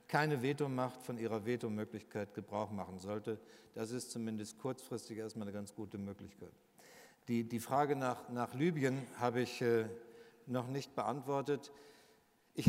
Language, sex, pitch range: German, male, 115-140 Hz